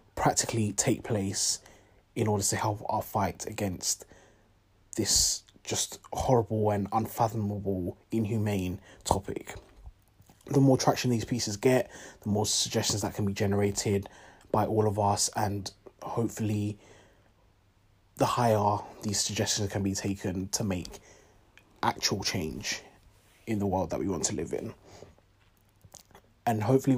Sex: male